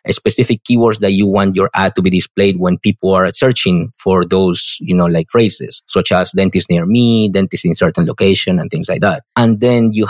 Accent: Spanish